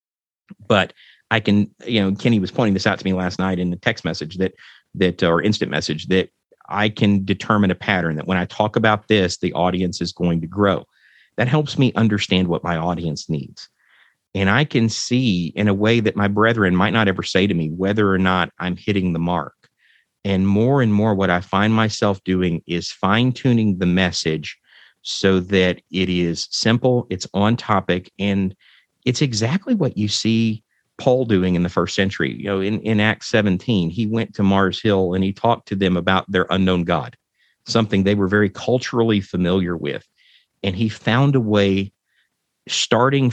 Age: 50-69